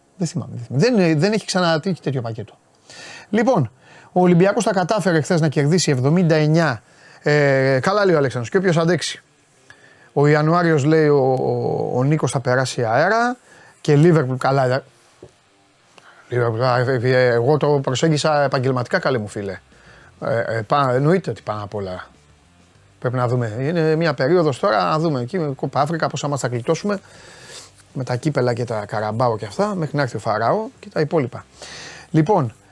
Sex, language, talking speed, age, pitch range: male, Greek, 185 wpm, 30-49, 120-160 Hz